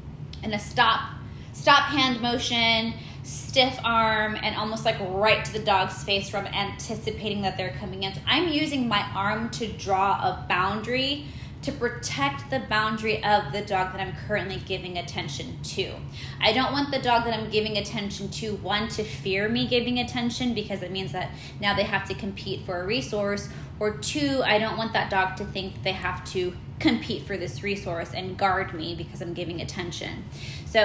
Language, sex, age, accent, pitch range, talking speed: English, female, 20-39, American, 190-230 Hz, 185 wpm